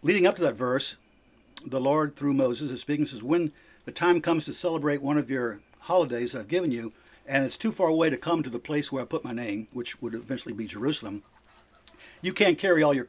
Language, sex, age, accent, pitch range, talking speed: English, male, 50-69, American, 130-170 Hz, 240 wpm